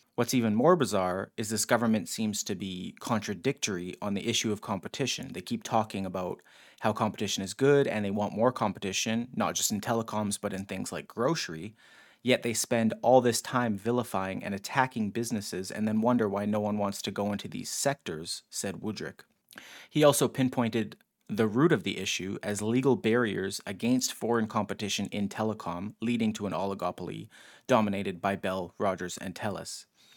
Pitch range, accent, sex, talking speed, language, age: 100-120 Hz, American, male, 175 wpm, English, 30-49